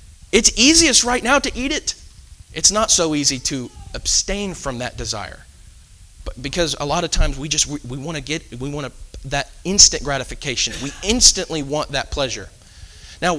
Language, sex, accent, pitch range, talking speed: English, male, American, 120-185 Hz, 180 wpm